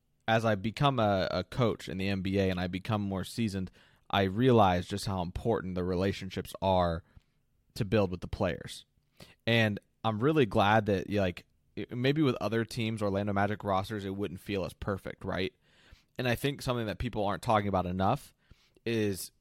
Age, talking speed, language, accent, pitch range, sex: 20-39, 180 wpm, English, American, 95-115 Hz, male